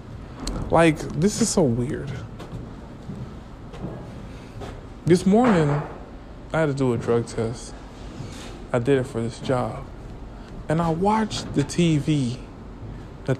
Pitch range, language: 120-150 Hz, English